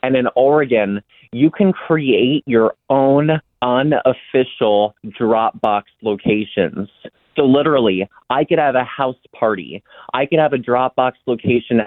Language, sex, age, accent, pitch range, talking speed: English, male, 30-49, American, 110-125 Hz, 125 wpm